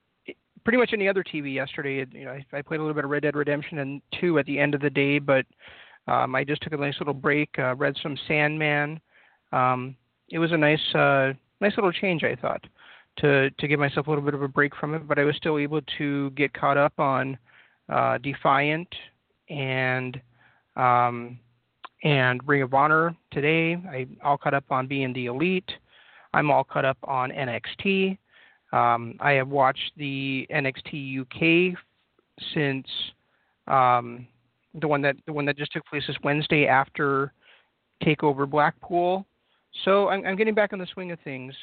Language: English